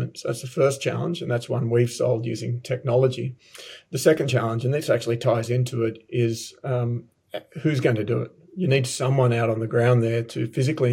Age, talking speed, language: 40-59, 210 wpm, English